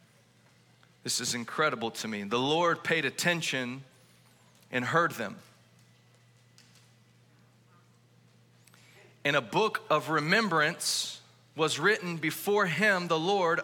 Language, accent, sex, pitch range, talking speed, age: English, American, male, 130-210 Hz, 100 wpm, 40-59